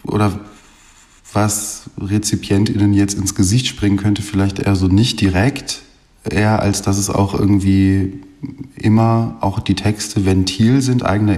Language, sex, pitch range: German, male, 95-105 Hz